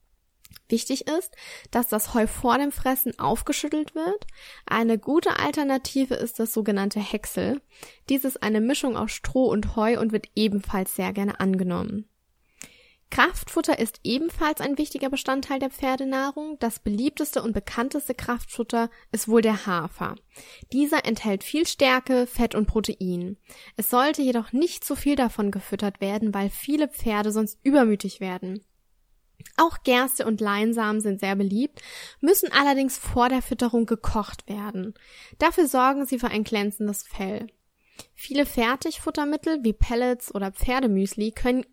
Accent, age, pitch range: German, 10-29, 210-270 Hz